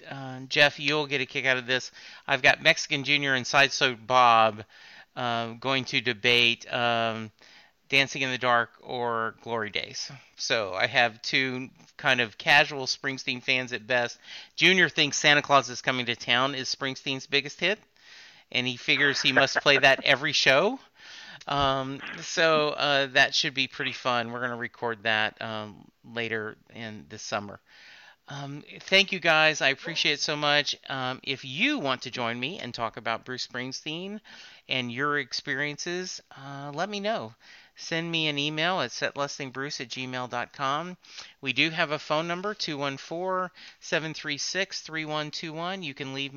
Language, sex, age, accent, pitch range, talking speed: English, male, 40-59, American, 125-160 Hz, 160 wpm